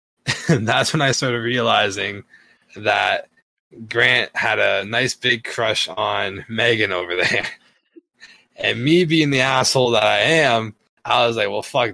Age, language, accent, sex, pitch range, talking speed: 20-39, English, American, male, 100-135 Hz, 145 wpm